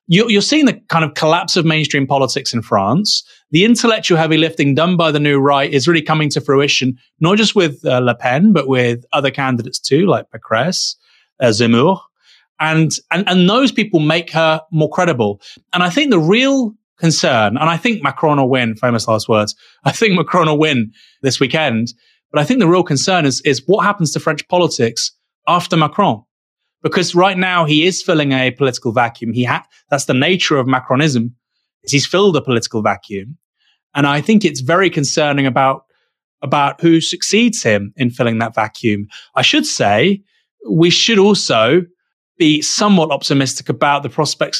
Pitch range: 130-175 Hz